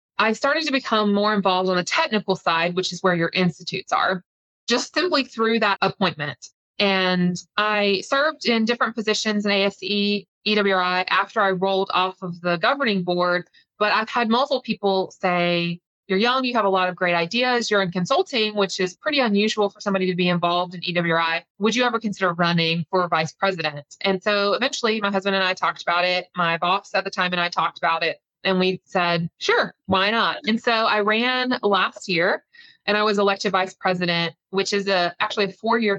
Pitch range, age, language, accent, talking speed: 180-210 Hz, 20-39, English, American, 200 wpm